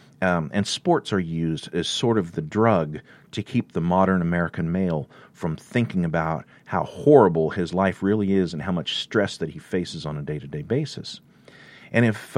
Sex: male